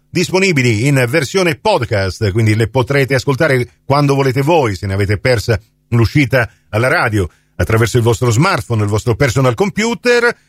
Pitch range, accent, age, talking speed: 135-200 Hz, native, 50-69, 150 wpm